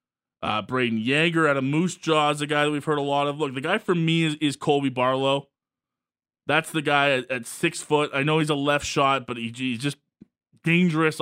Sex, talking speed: male, 230 wpm